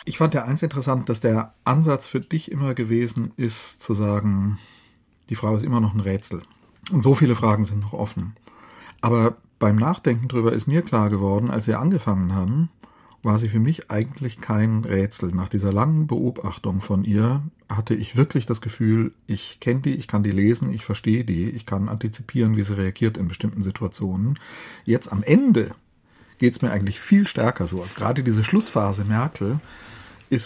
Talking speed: 185 wpm